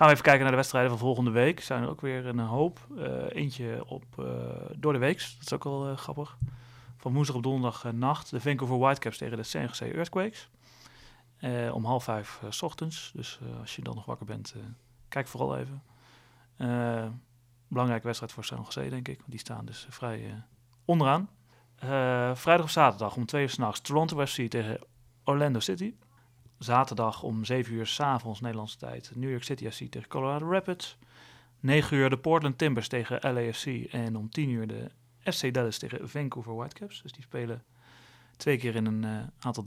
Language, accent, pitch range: Dutch, Dutch, 120-140 Hz